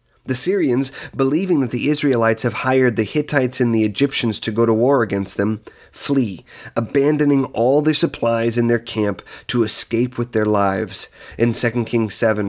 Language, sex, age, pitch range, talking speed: English, male, 30-49, 110-140 Hz, 175 wpm